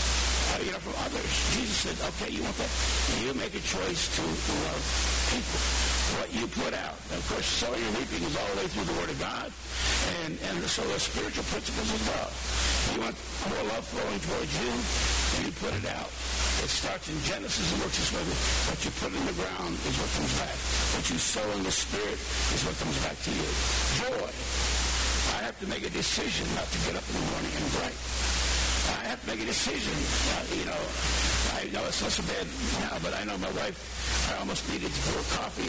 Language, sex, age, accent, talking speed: English, male, 60-79, American, 225 wpm